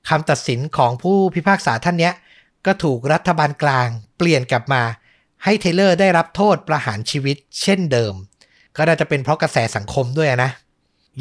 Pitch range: 120-155 Hz